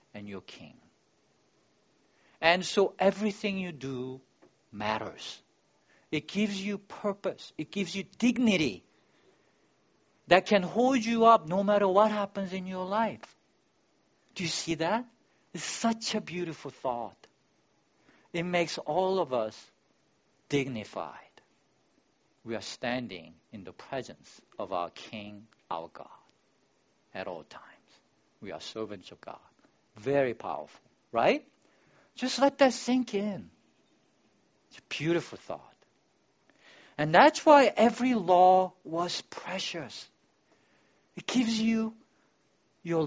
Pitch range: 165-230 Hz